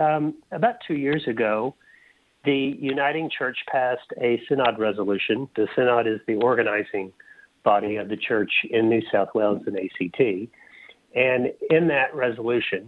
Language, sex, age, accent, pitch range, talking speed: English, male, 40-59, American, 115-145 Hz, 145 wpm